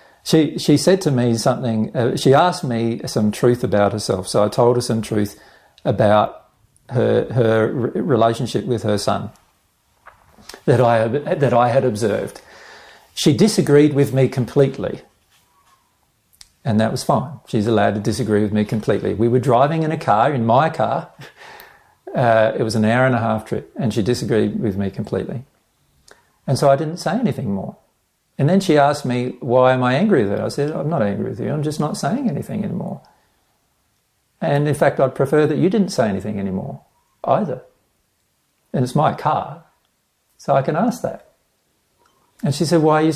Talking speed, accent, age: 185 wpm, Australian, 50-69